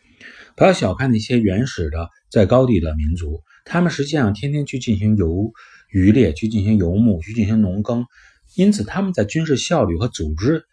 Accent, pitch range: native, 85-125 Hz